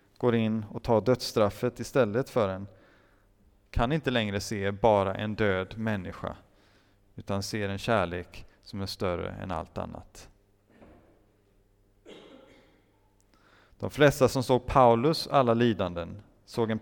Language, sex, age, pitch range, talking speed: Swedish, male, 30-49, 100-130 Hz, 125 wpm